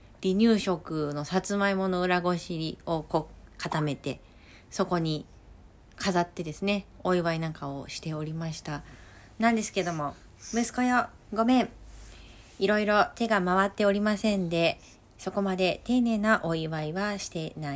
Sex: female